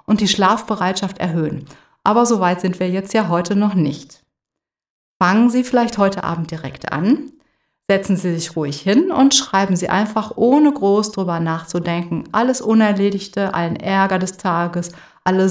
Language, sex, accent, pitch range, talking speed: German, female, German, 175-225 Hz, 155 wpm